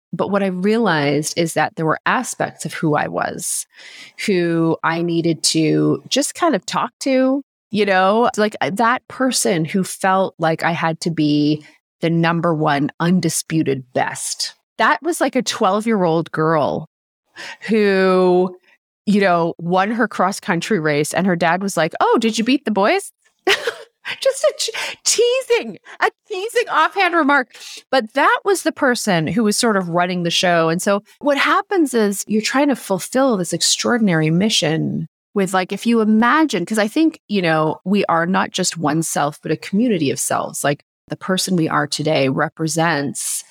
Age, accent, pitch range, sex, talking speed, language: 30-49, American, 160-230 Hz, female, 170 wpm, English